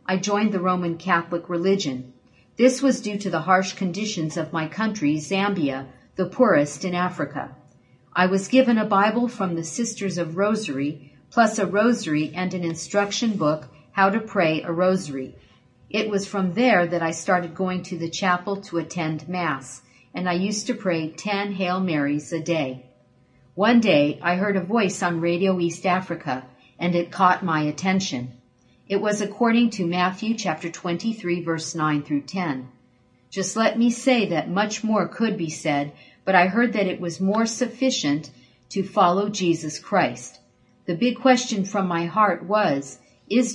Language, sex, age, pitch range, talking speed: English, female, 50-69, 155-205 Hz, 170 wpm